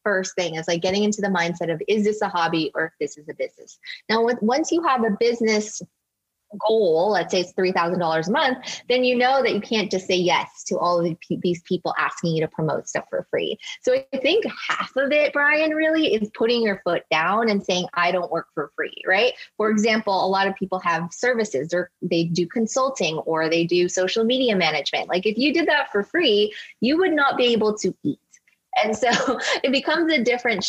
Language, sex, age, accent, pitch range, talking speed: English, female, 20-39, American, 175-235 Hz, 220 wpm